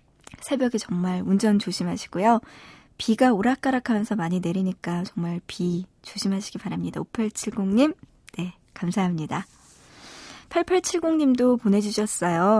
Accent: native